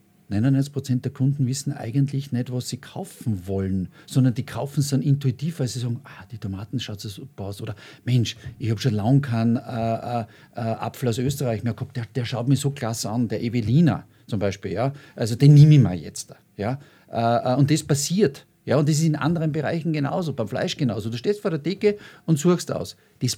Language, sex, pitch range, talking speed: German, male, 115-145 Hz, 215 wpm